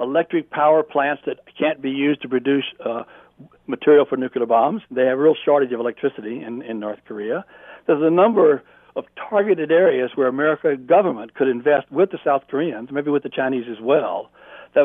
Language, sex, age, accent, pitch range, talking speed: English, male, 60-79, American, 130-165 Hz, 190 wpm